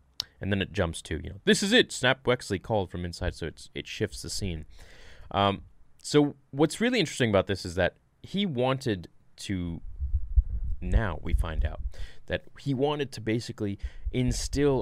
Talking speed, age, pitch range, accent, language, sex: 175 wpm, 20-39, 85-115 Hz, American, English, male